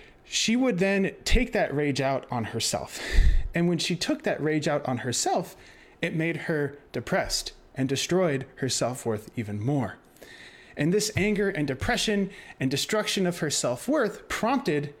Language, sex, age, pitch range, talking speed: English, male, 30-49, 145-215 Hz, 155 wpm